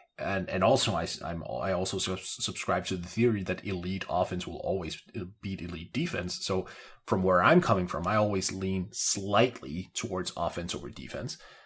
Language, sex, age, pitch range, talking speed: English, male, 30-49, 90-115 Hz, 170 wpm